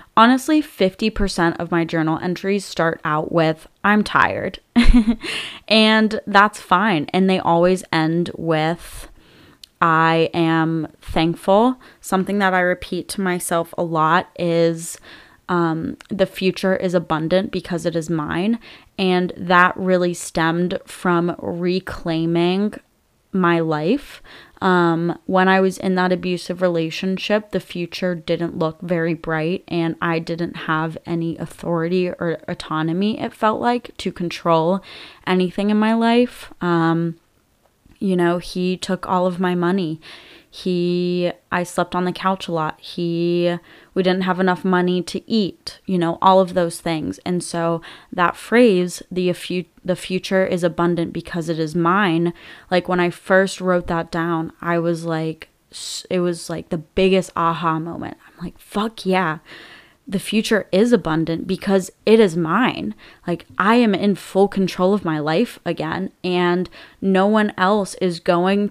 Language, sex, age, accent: English, female, 20-39, American